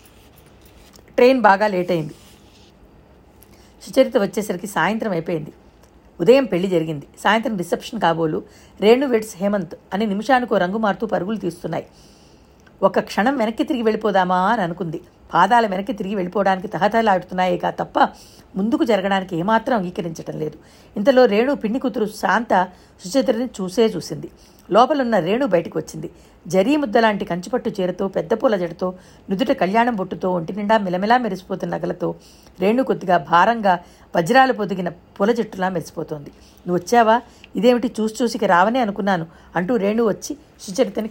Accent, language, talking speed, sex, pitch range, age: native, Telugu, 125 wpm, female, 180-230 Hz, 60-79